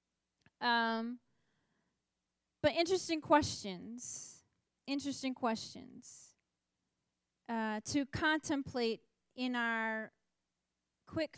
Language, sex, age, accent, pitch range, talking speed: English, female, 30-49, American, 225-260 Hz, 65 wpm